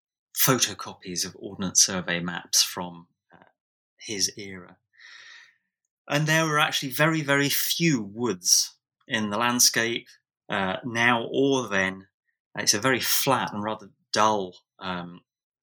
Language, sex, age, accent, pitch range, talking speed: English, male, 30-49, British, 95-130 Hz, 125 wpm